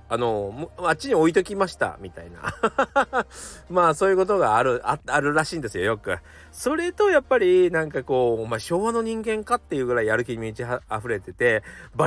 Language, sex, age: Japanese, male, 40-59